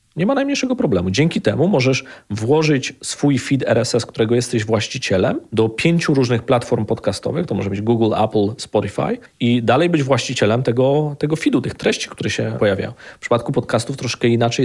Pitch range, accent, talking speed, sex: 110-130 Hz, native, 170 wpm, male